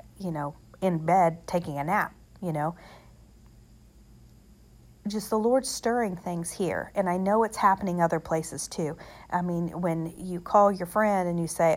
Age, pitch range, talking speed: 40-59, 175-225 Hz, 170 wpm